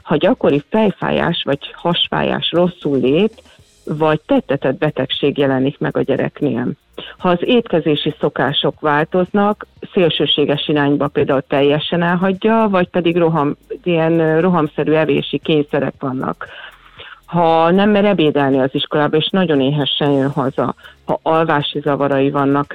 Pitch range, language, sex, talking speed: 140-165 Hz, Hungarian, female, 125 wpm